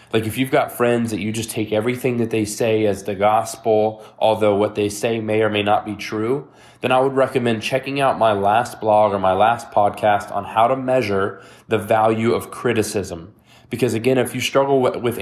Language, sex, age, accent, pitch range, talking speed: English, male, 20-39, American, 110-130 Hz, 210 wpm